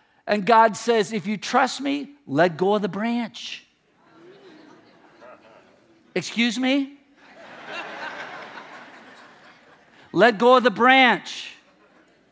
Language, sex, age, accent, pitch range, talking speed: English, male, 50-69, American, 195-270 Hz, 95 wpm